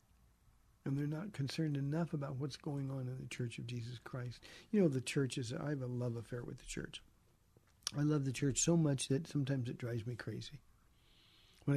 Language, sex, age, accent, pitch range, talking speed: English, male, 50-69, American, 120-155 Hz, 205 wpm